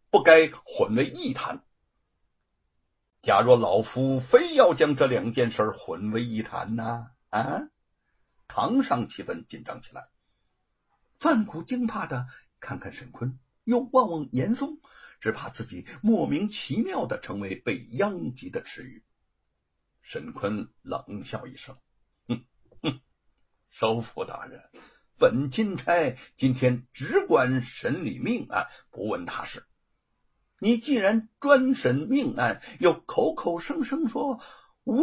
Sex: male